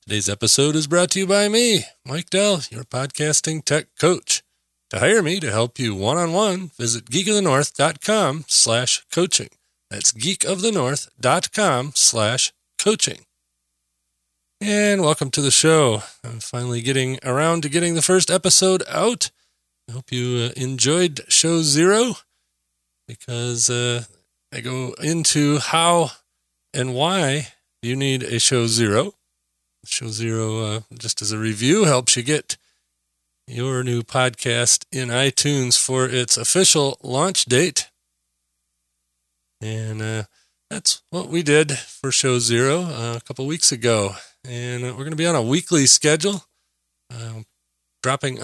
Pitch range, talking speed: 110-150 Hz, 135 wpm